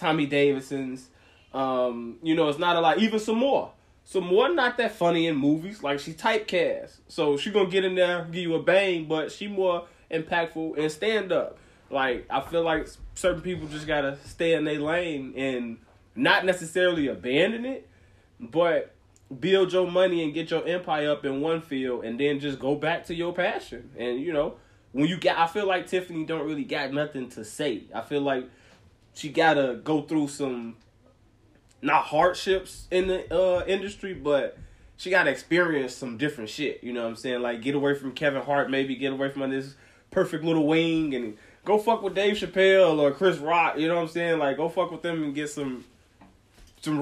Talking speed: 205 wpm